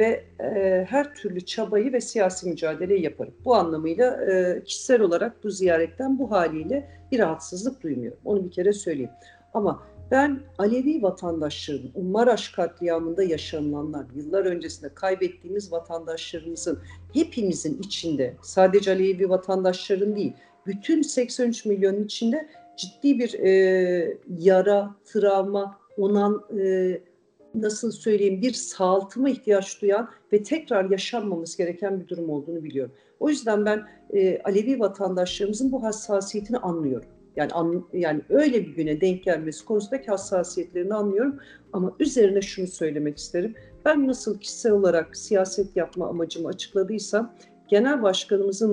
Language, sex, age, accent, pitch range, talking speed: Turkish, female, 50-69, native, 180-225 Hz, 125 wpm